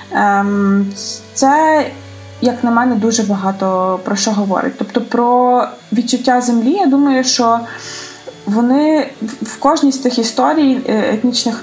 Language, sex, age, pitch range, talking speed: Ukrainian, female, 20-39, 215-255 Hz, 120 wpm